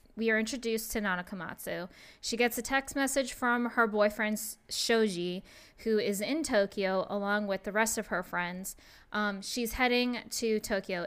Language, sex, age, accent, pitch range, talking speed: English, female, 10-29, American, 200-245 Hz, 170 wpm